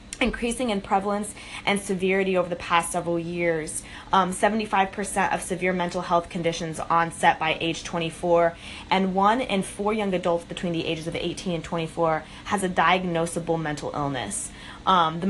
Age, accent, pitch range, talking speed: 20-39, American, 165-195 Hz, 160 wpm